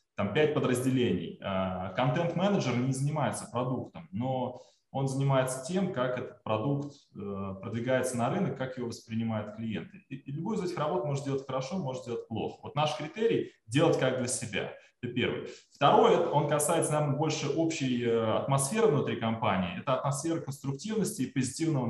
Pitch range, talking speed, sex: 120-150 Hz, 155 wpm, male